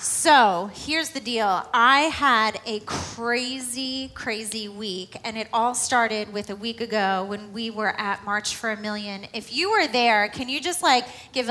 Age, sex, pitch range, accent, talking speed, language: 30-49, female, 225-280 Hz, American, 185 wpm, English